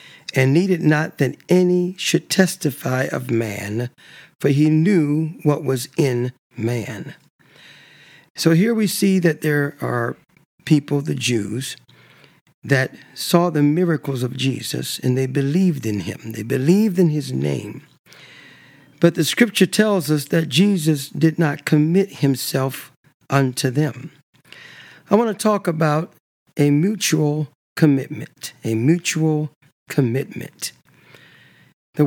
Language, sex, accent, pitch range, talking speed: English, male, American, 130-165 Hz, 125 wpm